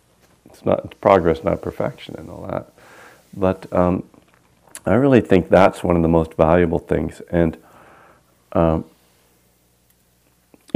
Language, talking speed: English, 115 wpm